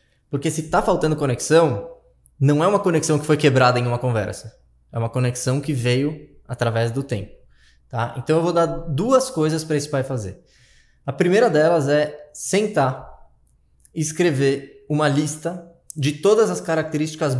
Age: 20-39